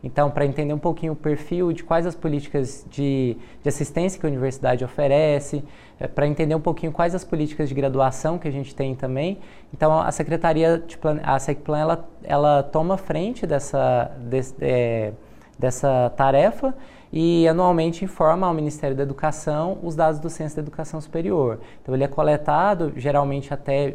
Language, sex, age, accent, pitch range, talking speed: Portuguese, male, 20-39, Brazilian, 140-165 Hz, 165 wpm